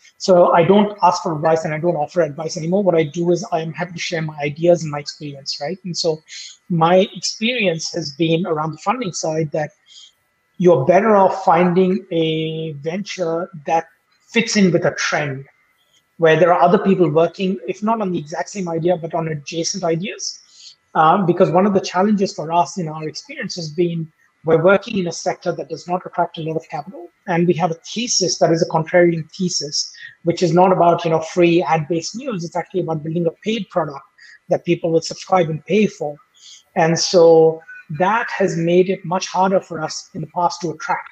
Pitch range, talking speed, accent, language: 160-180 Hz, 205 wpm, Indian, English